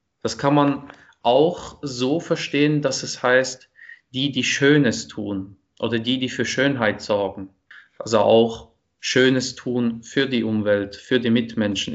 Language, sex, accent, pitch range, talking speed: German, male, German, 115-135 Hz, 145 wpm